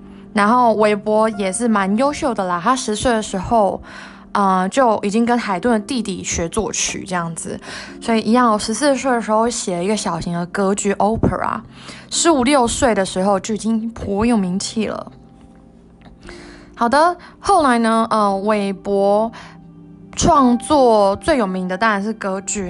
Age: 20-39